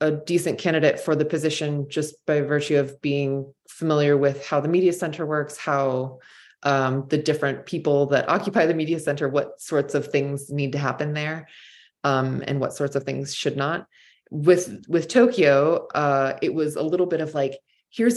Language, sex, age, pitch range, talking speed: English, female, 20-39, 140-175 Hz, 185 wpm